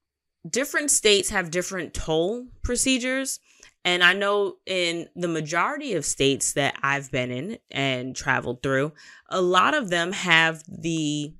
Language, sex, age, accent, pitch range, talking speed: English, female, 20-39, American, 145-195 Hz, 140 wpm